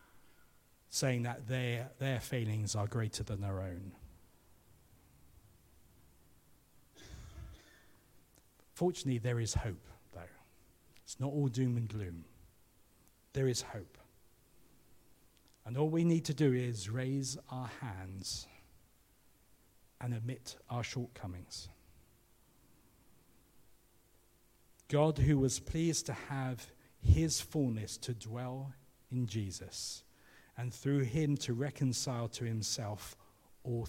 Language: English